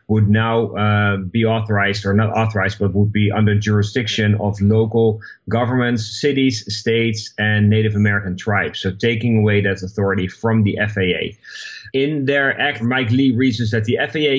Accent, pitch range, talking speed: Dutch, 105-125 Hz, 165 wpm